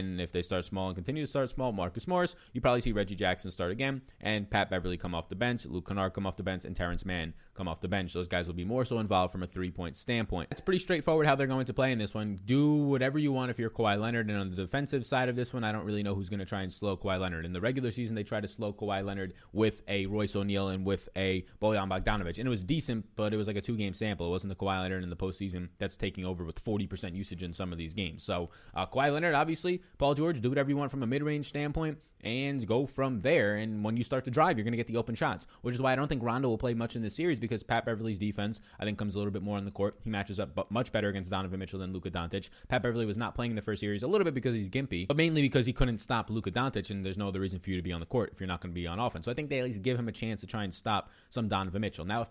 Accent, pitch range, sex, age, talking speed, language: American, 95-125 Hz, male, 20-39, 310 wpm, English